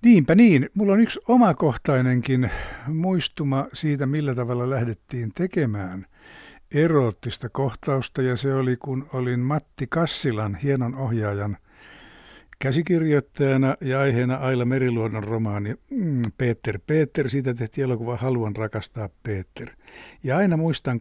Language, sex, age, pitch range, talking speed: Finnish, male, 60-79, 115-150 Hz, 115 wpm